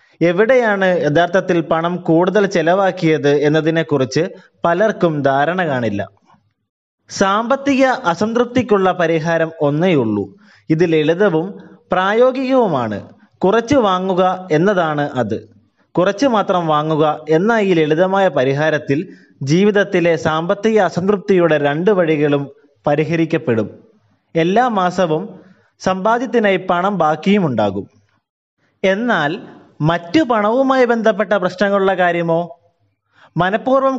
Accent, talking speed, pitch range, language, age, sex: native, 85 wpm, 155-205 Hz, Malayalam, 20-39, male